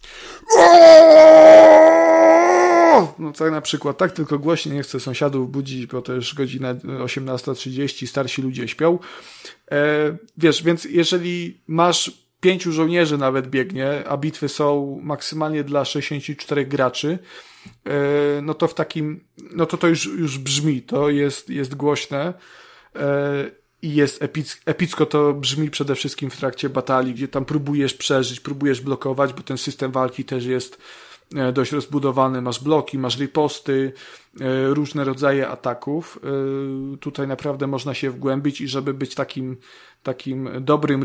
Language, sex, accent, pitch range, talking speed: Polish, male, native, 130-150 Hz, 135 wpm